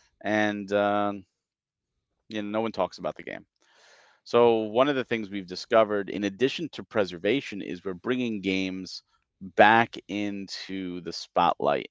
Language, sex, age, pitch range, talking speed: English, male, 40-59, 100-120 Hz, 145 wpm